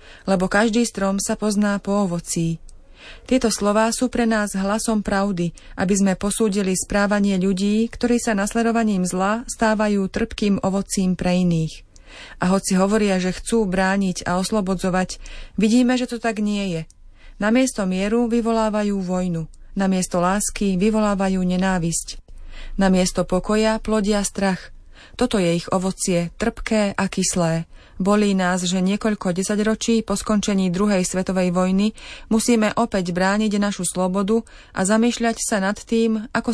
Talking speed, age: 140 wpm, 30-49